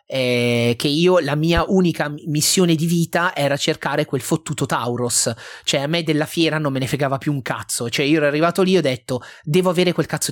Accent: native